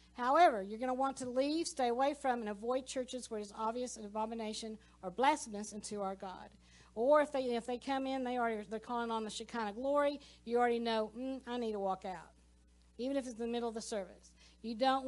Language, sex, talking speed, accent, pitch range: English, female, 215 wpm, American, 205-255 Hz